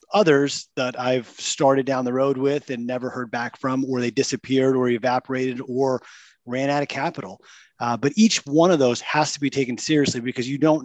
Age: 30-49